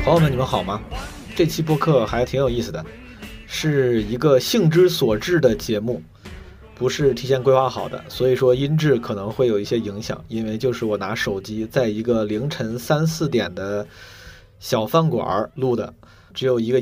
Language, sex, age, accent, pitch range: Chinese, male, 20-39, native, 110-140 Hz